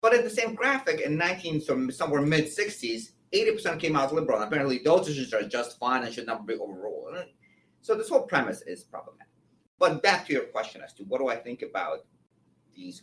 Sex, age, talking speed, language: male, 30-49, 205 wpm, English